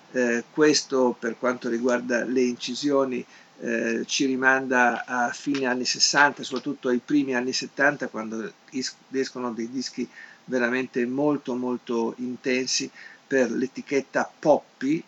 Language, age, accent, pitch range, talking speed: Italian, 50-69, native, 120-140 Hz, 125 wpm